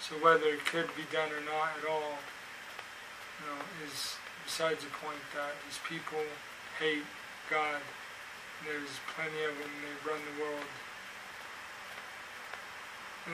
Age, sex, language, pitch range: 20-39, male, English, 150-160 Hz